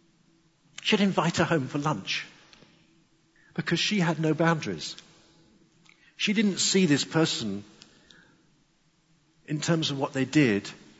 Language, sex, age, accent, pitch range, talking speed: English, male, 50-69, British, 120-165 Hz, 120 wpm